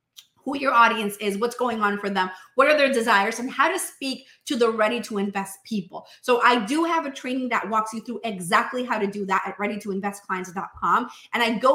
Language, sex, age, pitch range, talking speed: English, female, 30-49, 205-265 Hz, 220 wpm